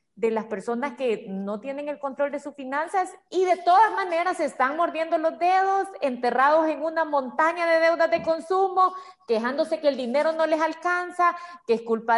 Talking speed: 185 wpm